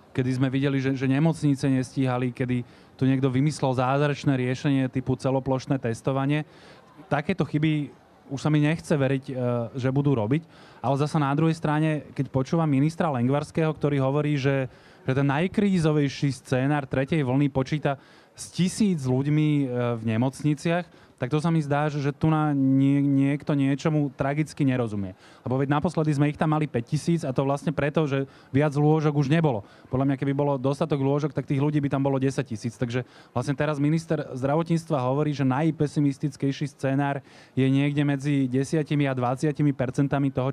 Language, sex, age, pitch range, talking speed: Slovak, male, 30-49, 135-155 Hz, 165 wpm